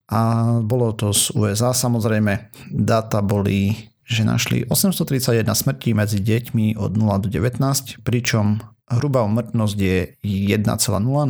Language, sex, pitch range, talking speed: Slovak, male, 110-130 Hz, 120 wpm